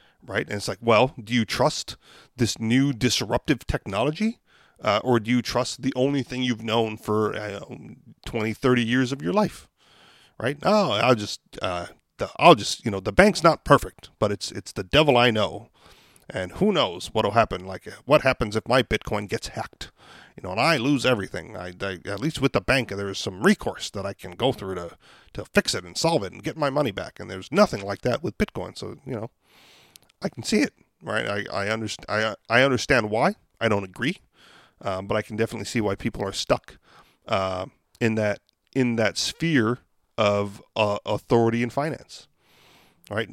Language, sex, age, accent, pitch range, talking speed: English, male, 40-59, American, 100-130 Hz, 200 wpm